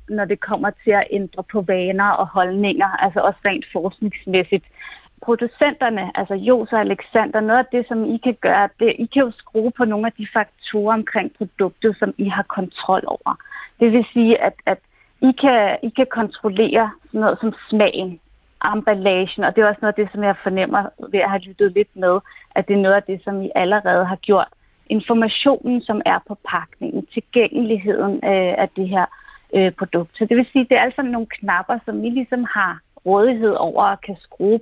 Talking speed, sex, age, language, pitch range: 195 wpm, female, 30-49, Danish, 195-240 Hz